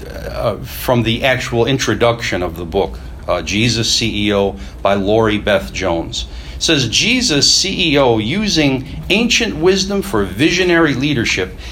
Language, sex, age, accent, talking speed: English, male, 60-79, American, 130 wpm